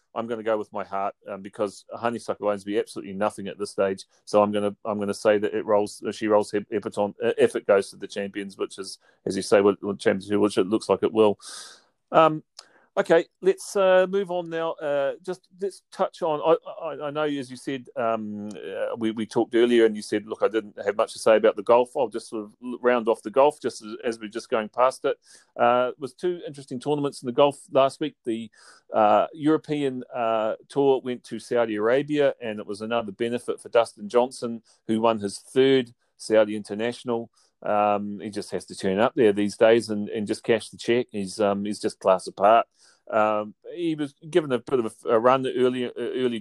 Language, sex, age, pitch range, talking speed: English, male, 40-59, 105-130 Hz, 220 wpm